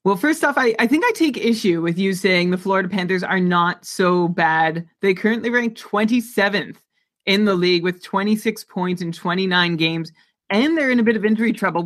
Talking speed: 200 wpm